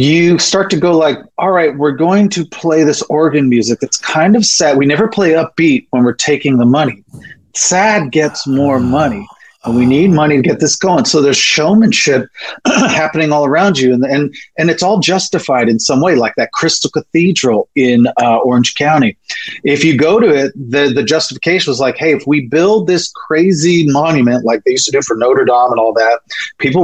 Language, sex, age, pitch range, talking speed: English, male, 30-49, 130-180 Hz, 205 wpm